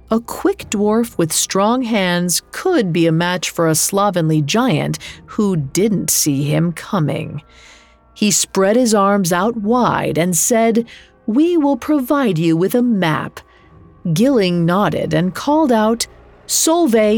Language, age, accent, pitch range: English, 40-59, American, 165-235 Hz